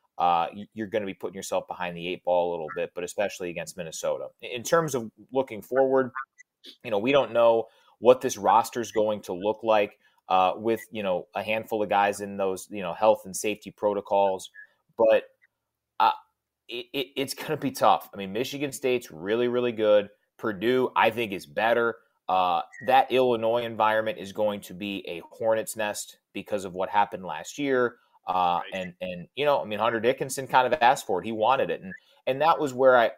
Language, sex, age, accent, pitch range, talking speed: English, male, 30-49, American, 105-140 Hz, 200 wpm